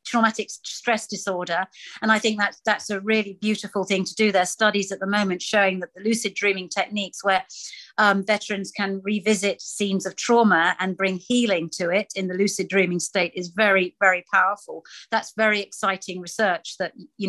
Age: 50-69